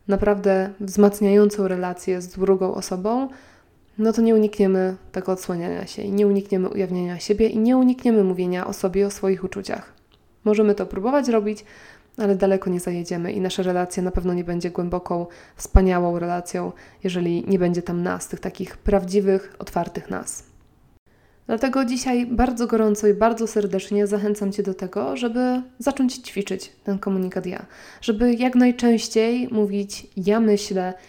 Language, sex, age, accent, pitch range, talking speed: Polish, female, 20-39, native, 190-220 Hz, 150 wpm